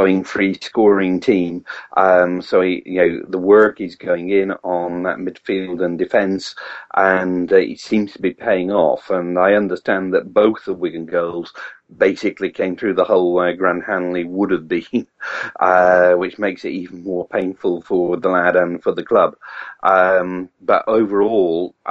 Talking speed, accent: 175 wpm, British